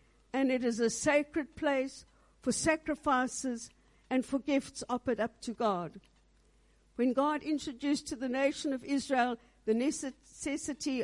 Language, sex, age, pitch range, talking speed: English, female, 60-79, 230-275 Hz, 135 wpm